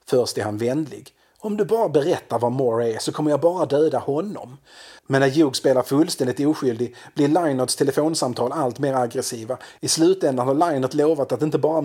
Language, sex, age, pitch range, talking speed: Swedish, male, 30-49, 125-155 Hz, 185 wpm